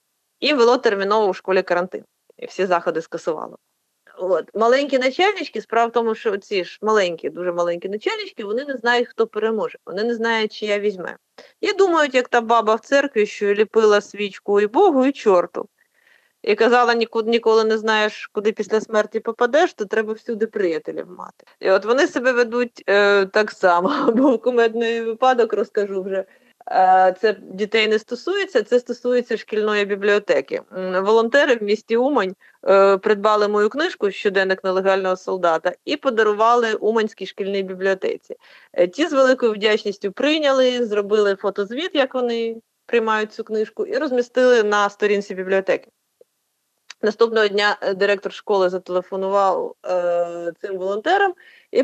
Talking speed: 145 wpm